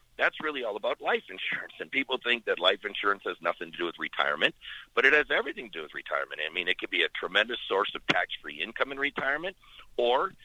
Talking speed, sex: 230 wpm, male